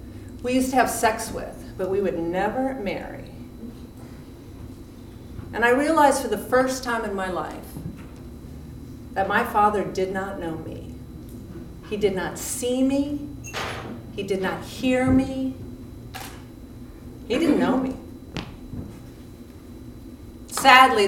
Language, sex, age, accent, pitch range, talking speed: English, female, 50-69, American, 170-215 Hz, 120 wpm